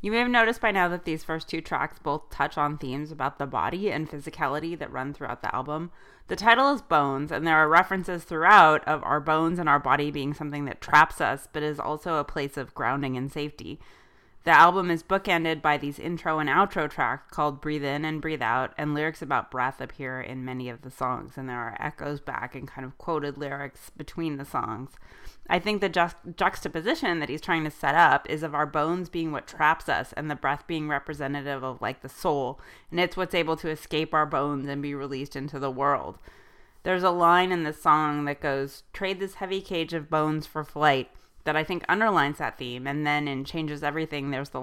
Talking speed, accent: 220 wpm, American